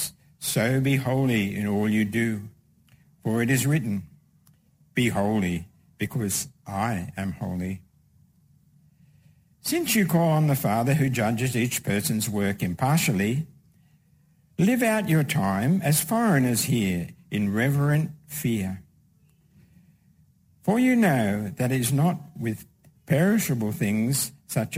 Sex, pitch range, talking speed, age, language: male, 105-160 Hz, 120 wpm, 60-79, English